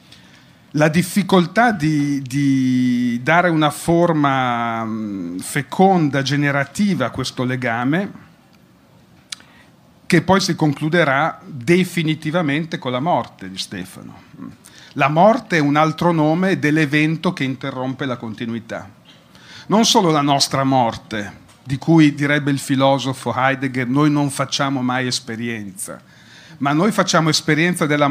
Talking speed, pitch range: 115 wpm, 130-175 Hz